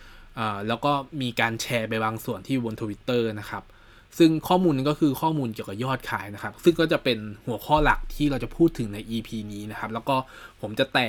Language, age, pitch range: Thai, 20-39, 110-150 Hz